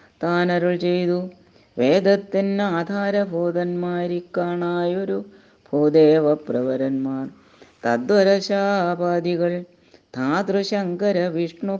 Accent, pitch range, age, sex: native, 170-200 Hz, 30-49, female